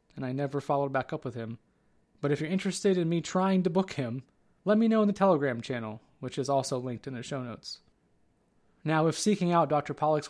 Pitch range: 130-160 Hz